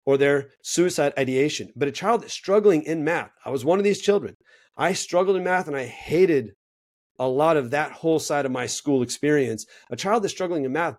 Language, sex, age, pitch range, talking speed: English, male, 30-49, 125-155 Hz, 220 wpm